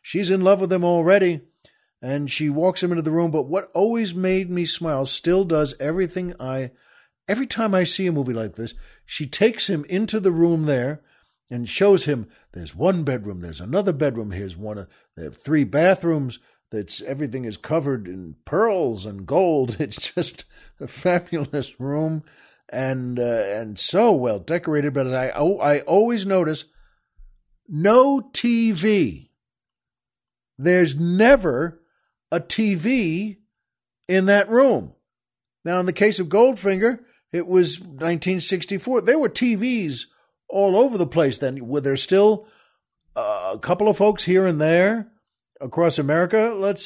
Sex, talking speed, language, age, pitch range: male, 150 wpm, English, 60-79, 145-200 Hz